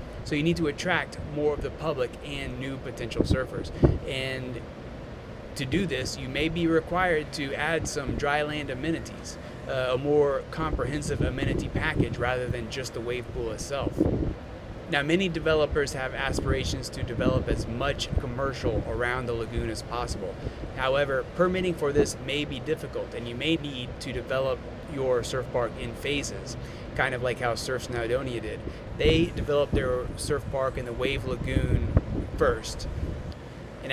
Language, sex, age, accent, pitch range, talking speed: English, male, 30-49, American, 120-145 Hz, 160 wpm